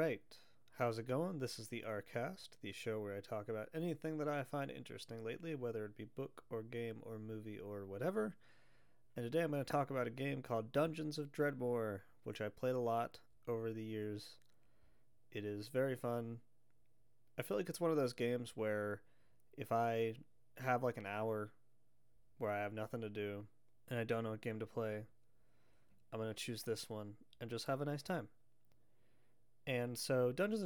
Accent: American